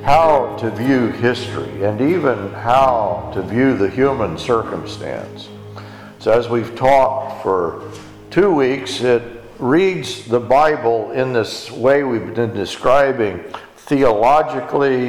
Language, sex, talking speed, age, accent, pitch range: English, male, 120 wpm, 50-69, American, 115-155 Hz